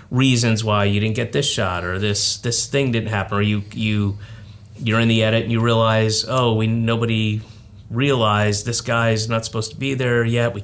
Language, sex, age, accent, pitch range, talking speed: English, male, 30-49, American, 105-120 Hz, 210 wpm